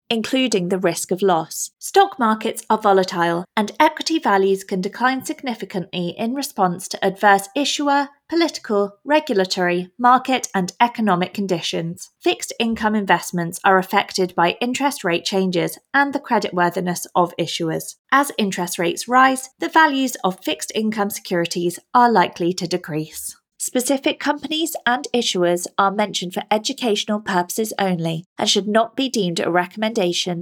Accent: British